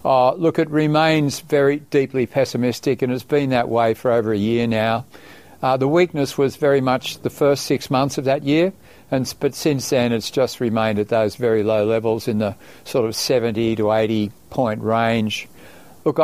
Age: 50-69